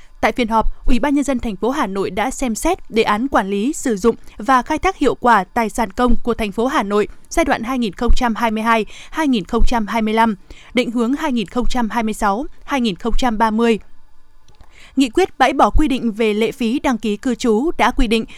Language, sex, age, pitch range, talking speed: Vietnamese, female, 20-39, 225-270 Hz, 180 wpm